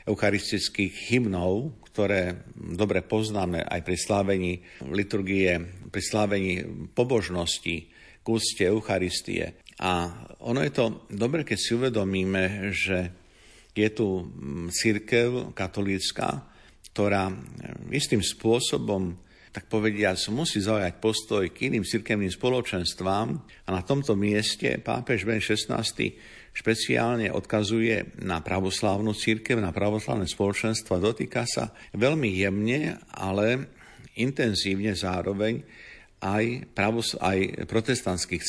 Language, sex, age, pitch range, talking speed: Slovak, male, 50-69, 95-110 Hz, 100 wpm